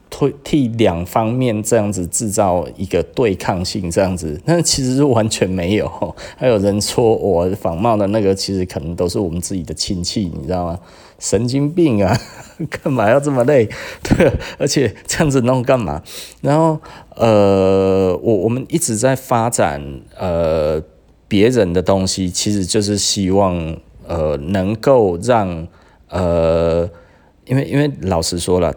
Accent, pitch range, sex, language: native, 85-115 Hz, male, Chinese